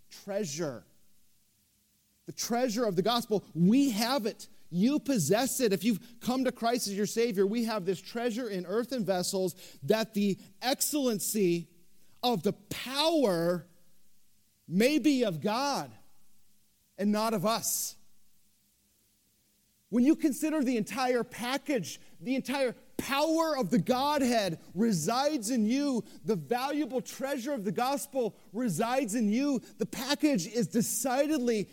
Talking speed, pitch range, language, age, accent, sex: 130 wpm, 180-245 Hz, English, 40-59, American, male